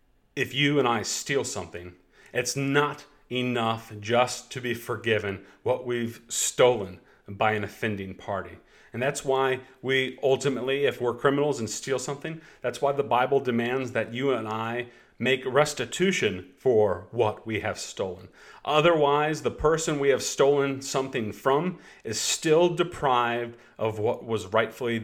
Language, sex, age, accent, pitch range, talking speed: English, male, 40-59, American, 110-140 Hz, 150 wpm